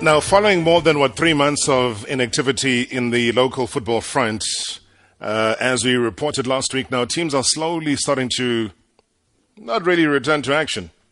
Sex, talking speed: male, 165 wpm